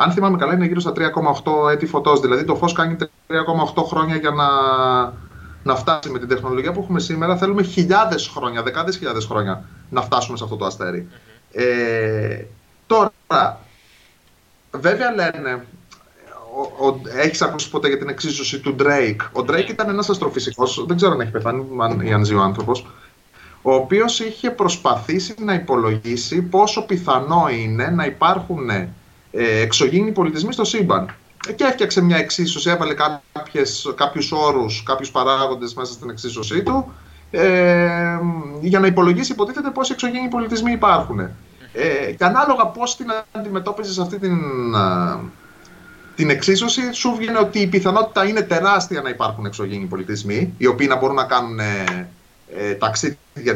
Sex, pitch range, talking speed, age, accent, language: male, 125-195 Hz, 150 wpm, 30-49, native, Greek